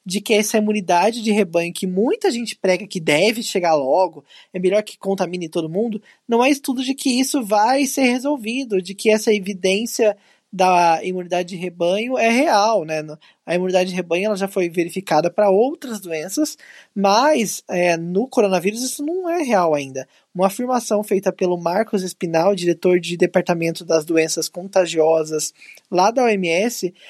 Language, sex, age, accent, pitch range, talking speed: Portuguese, male, 20-39, Brazilian, 180-230 Hz, 160 wpm